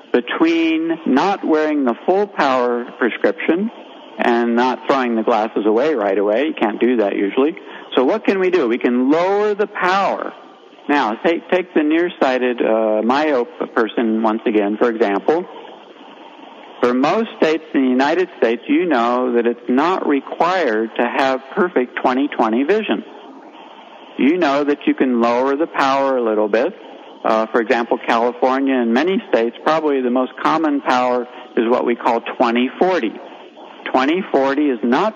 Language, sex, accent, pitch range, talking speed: English, male, American, 120-180 Hz, 155 wpm